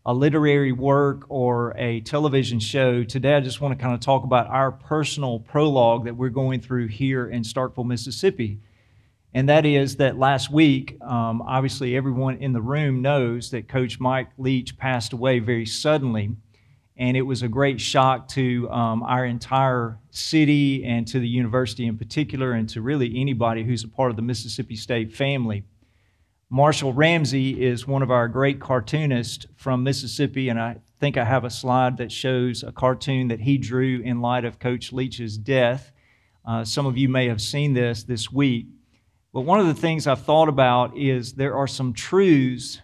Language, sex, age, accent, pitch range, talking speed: English, male, 40-59, American, 120-135 Hz, 180 wpm